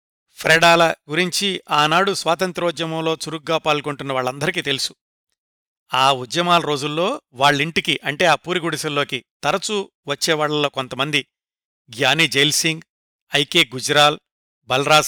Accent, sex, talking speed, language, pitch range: native, male, 90 wpm, Telugu, 145-180 Hz